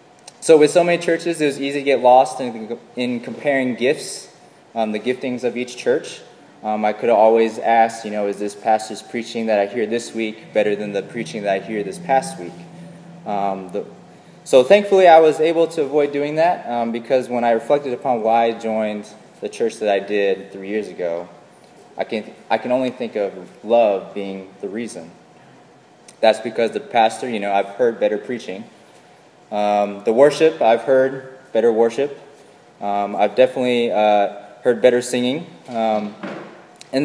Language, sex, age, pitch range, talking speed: English, male, 20-39, 110-140 Hz, 185 wpm